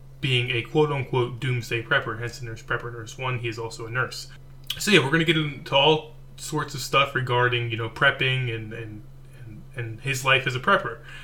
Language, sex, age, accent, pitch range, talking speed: English, male, 20-39, American, 125-145 Hz, 210 wpm